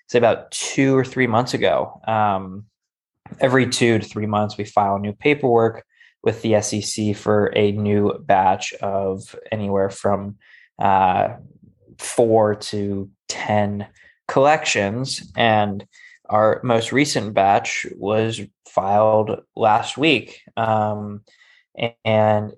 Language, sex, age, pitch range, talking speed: English, male, 20-39, 105-120 Hz, 115 wpm